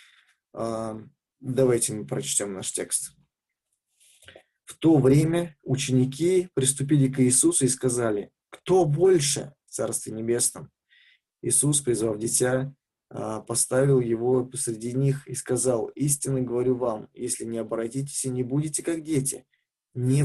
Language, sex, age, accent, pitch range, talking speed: Russian, male, 20-39, native, 120-140 Hz, 120 wpm